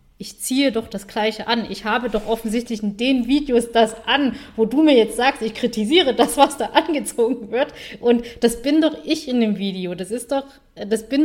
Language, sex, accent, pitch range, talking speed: German, female, German, 200-240 Hz, 215 wpm